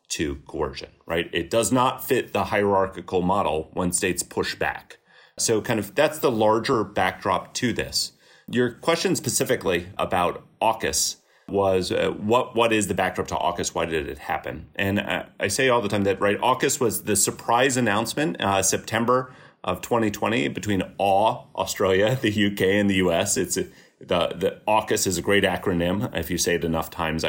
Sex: male